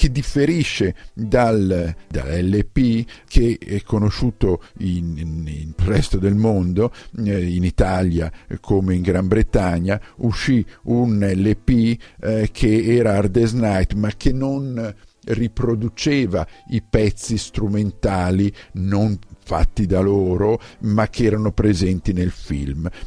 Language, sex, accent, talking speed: Italian, male, native, 110 wpm